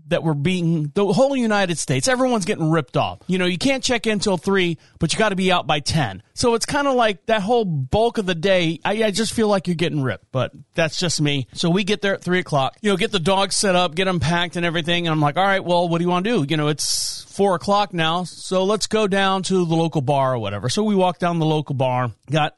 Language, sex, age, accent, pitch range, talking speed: English, male, 40-59, American, 150-195 Hz, 280 wpm